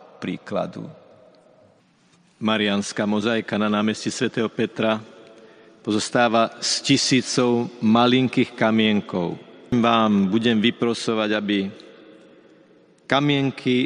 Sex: male